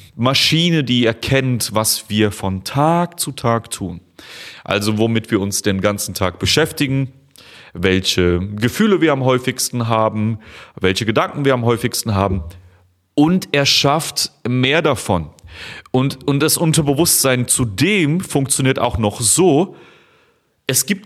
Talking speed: 130 wpm